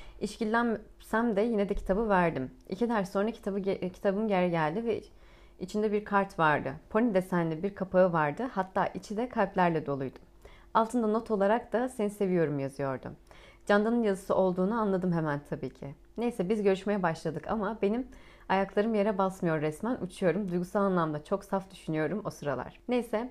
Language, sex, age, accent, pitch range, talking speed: Turkish, female, 30-49, native, 180-215 Hz, 160 wpm